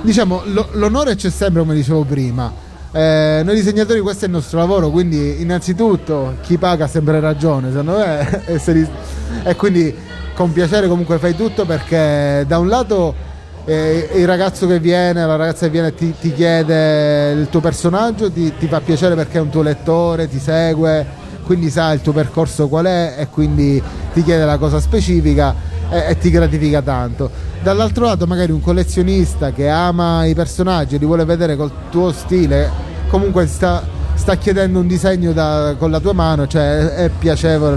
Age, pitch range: 30-49, 130-175 Hz